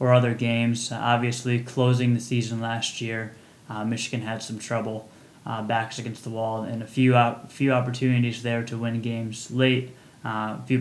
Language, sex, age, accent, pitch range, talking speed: English, male, 20-39, American, 115-125 Hz, 185 wpm